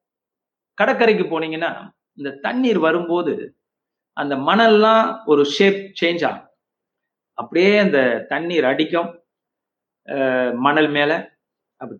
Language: Tamil